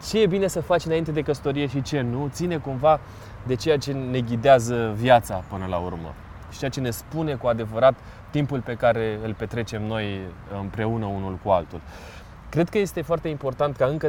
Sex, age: male, 20-39